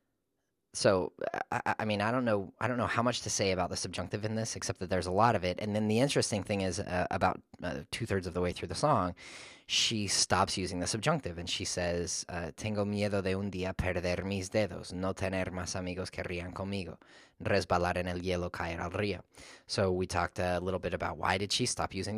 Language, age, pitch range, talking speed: English, 20-39, 90-105 Hz, 230 wpm